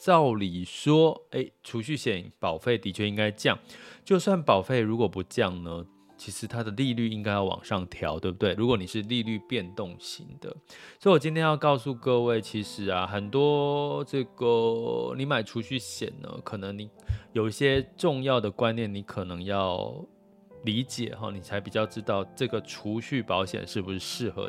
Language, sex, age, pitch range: Chinese, male, 20-39, 95-125 Hz